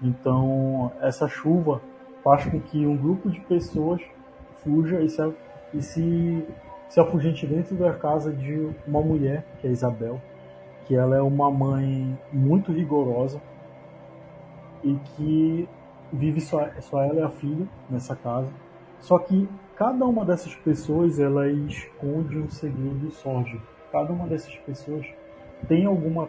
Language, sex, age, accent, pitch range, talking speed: Portuguese, male, 20-39, Brazilian, 130-165 Hz, 140 wpm